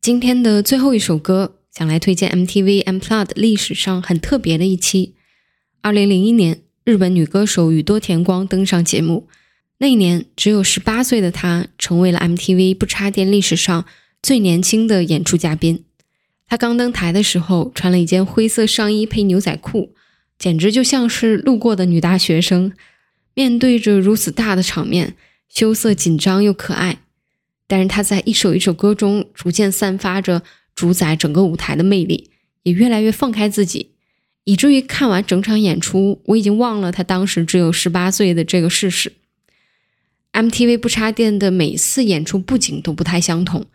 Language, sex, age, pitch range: Chinese, female, 10-29, 175-215 Hz